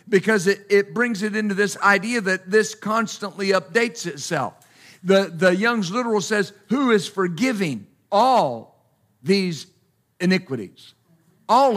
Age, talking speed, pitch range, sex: 50-69, 125 wpm, 165-225 Hz, male